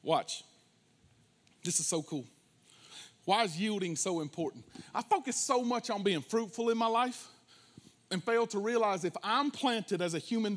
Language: English